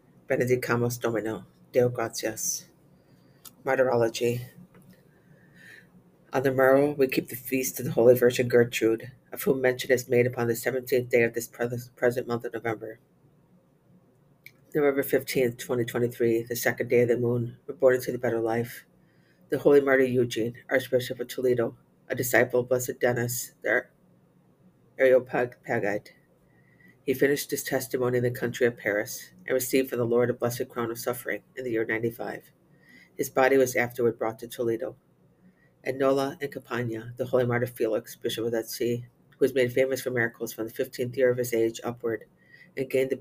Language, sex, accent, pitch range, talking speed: English, female, American, 120-130 Hz, 165 wpm